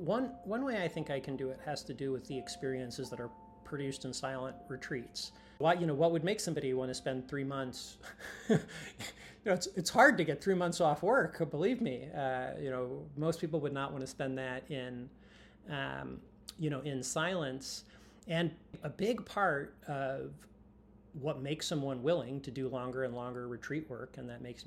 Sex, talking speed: male, 200 wpm